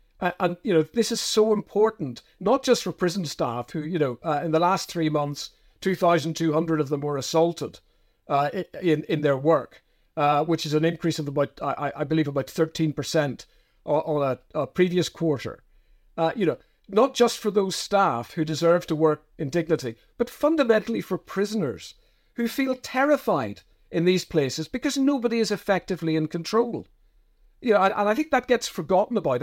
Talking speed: 175 wpm